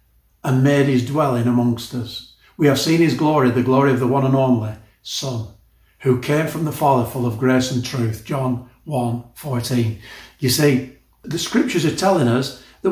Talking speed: 185 wpm